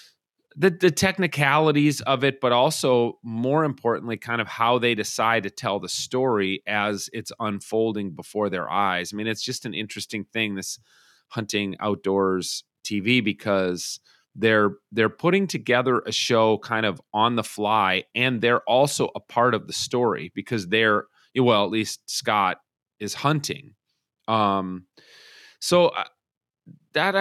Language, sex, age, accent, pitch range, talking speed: English, male, 30-49, American, 100-130 Hz, 145 wpm